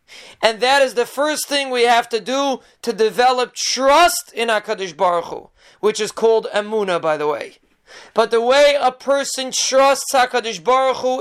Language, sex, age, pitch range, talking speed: English, male, 30-49, 225-275 Hz, 175 wpm